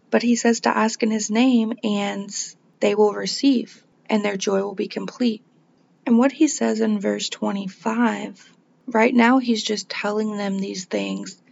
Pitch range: 200-230 Hz